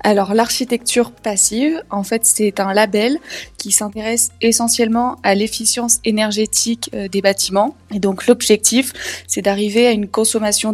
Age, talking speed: 20-39, 135 wpm